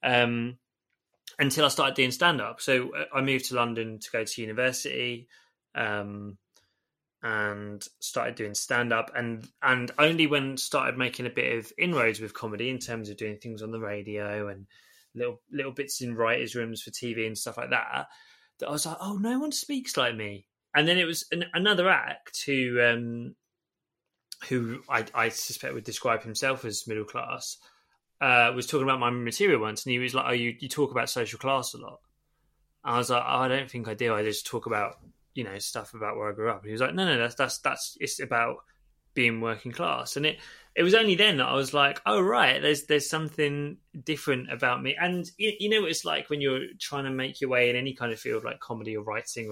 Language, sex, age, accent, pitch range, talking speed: English, male, 20-39, British, 115-145 Hz, 215 wpm